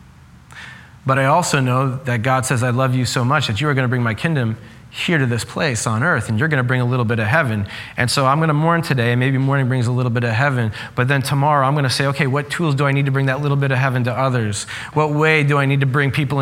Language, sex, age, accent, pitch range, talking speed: English, male, 20-39, American, 115-150 Hz, 300 wpm